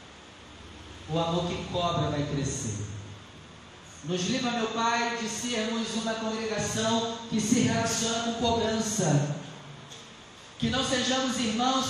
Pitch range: 145-235 Hz